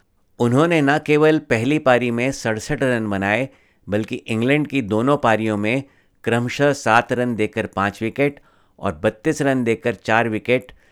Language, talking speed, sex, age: Hindi, 150 wpm, male, 50-69